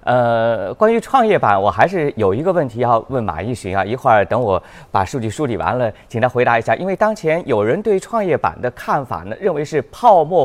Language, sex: Chinese, male